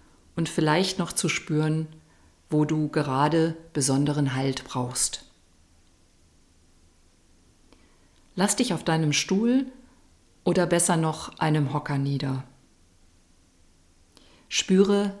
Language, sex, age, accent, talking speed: German, female, 50-69, German, 90 wpm